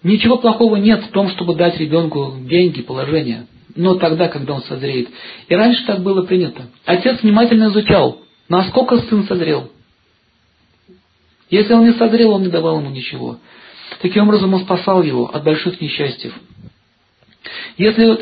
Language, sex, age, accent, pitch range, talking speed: Russian, male, 40-59, native, 130-185 Hz, 145 wpm